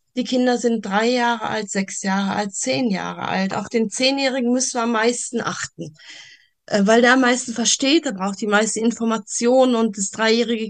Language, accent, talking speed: German, German, 185 wpm